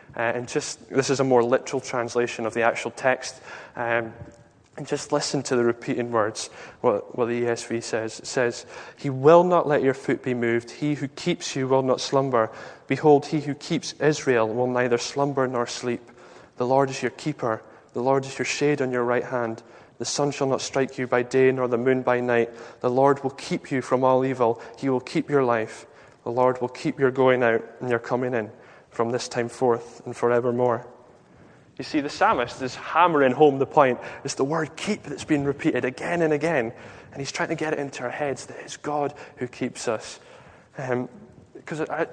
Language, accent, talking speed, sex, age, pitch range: English, British, 205 wpm, male, 20-39, 120-140 Hz